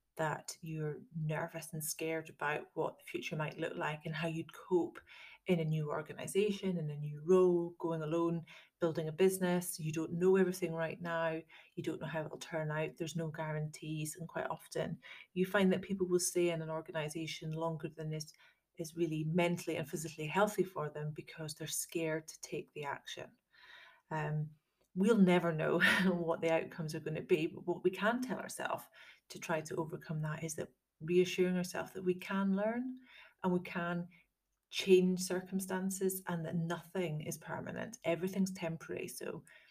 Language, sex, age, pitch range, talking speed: English, female, 30-49, 160-185 Hz, 175 wpm